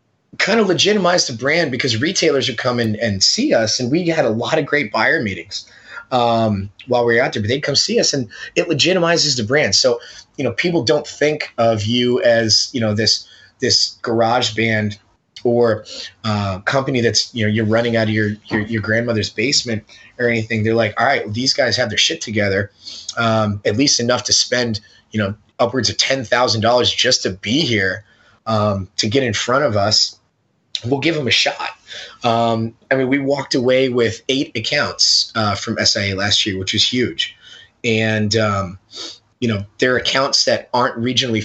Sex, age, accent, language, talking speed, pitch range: male, 20-39, American, English, 195 wpm, 105-125 Hz